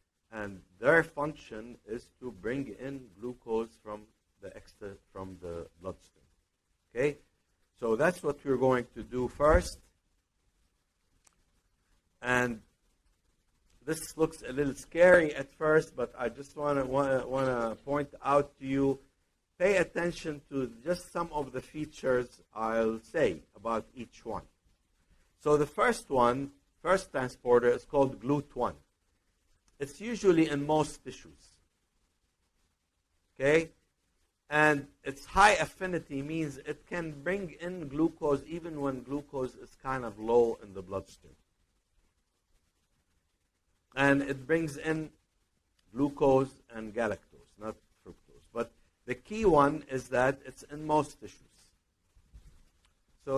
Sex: male